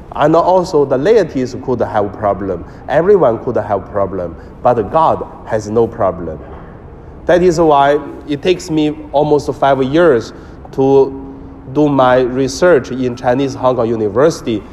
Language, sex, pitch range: Chinese, male, 115-150 Hz